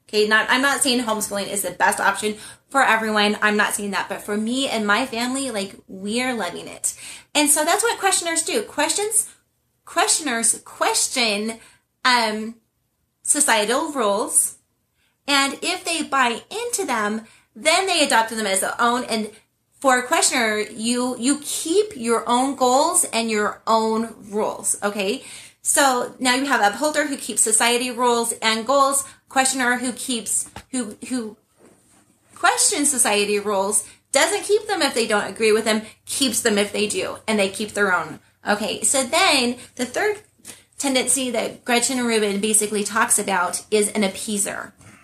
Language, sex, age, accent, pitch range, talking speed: English, female, 30-49, American, 215-275 Hz, 160 wpm